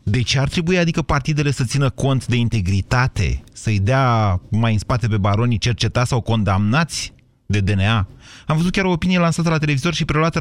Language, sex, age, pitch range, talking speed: Romanian, male, 30-49, 105-150 Hz, 195 wpm